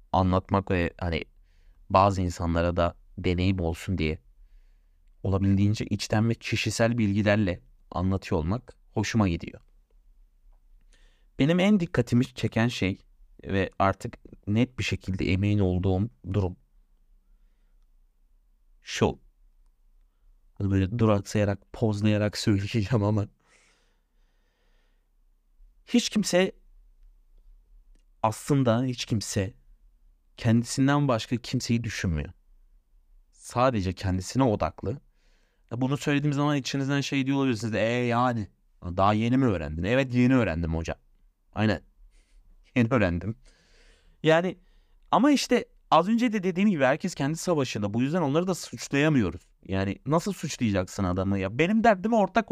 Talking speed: 105 wpm